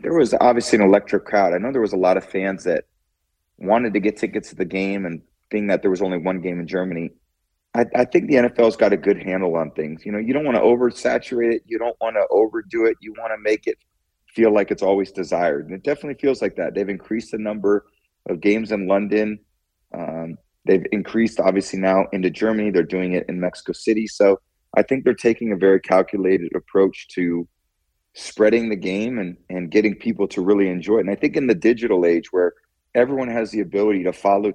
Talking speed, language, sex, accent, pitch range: 225 wpm, English, male, American, 95-110 Hz